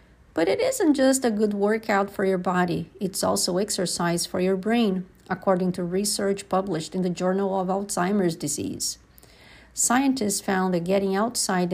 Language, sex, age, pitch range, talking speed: English, female, 50-69, 190-265 Hz, 160 wpm